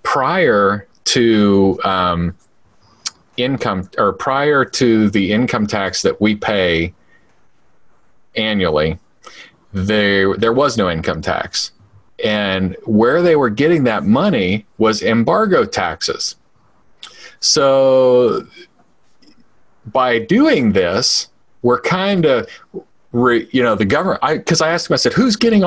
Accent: American